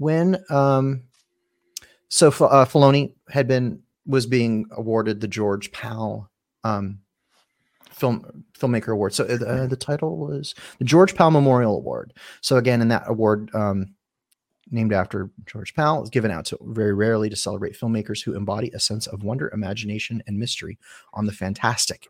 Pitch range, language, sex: 105-125 Hz, English, male